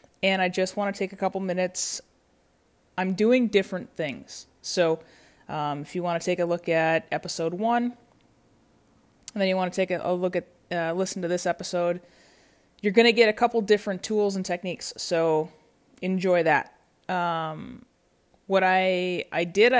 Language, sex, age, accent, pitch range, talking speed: English, female, 20-39, American, 170-195 Hz, 175 wpm